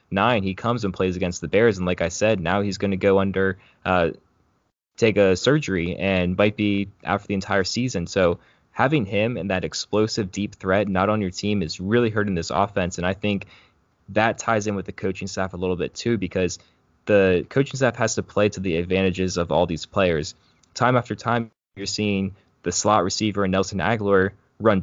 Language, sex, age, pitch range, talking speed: English, male, 10-29, 95-110 Hz, 210 wpm